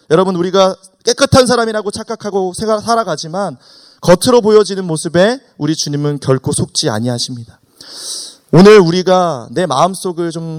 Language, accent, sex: Korean, native, male